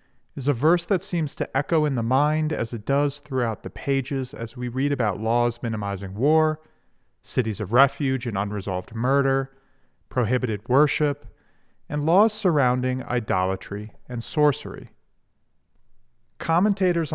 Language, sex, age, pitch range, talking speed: English, male, 40-59, 115-150 Hz, 135 wpm